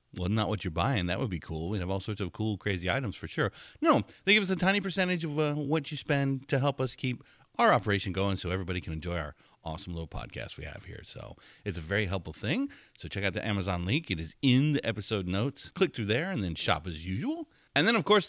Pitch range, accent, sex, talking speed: 95-150 Hz, American, male, 260 wpm